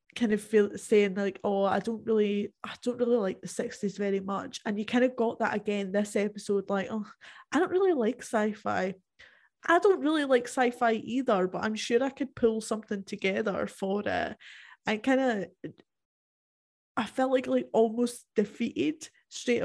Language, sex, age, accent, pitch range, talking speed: English, female, 10-29, British, 200-240 Hz, 180 wpm